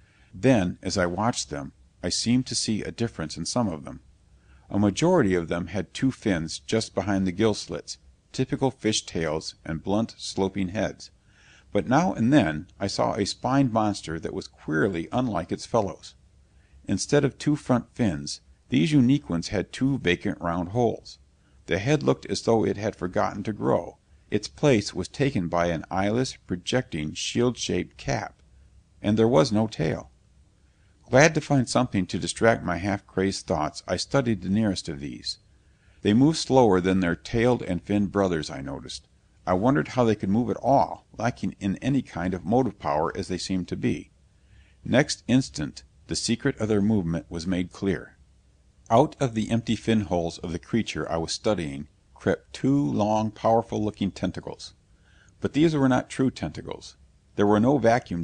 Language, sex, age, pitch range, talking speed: English, male, 50-69, 85-115 Hz, 175 wpm